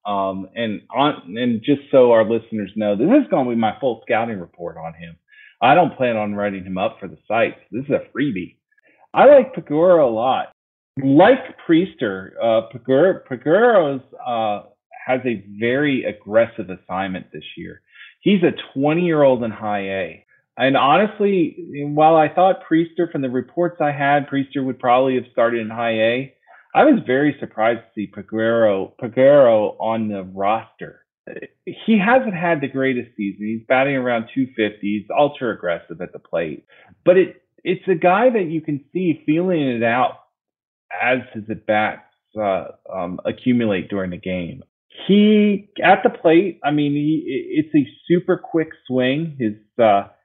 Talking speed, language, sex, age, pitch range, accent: 165 wpm, English, male, 40-59, 110-175 Hz, American